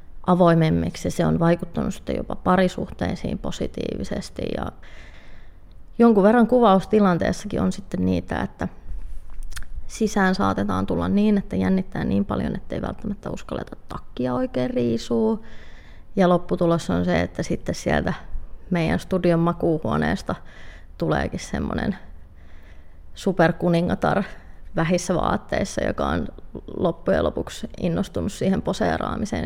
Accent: native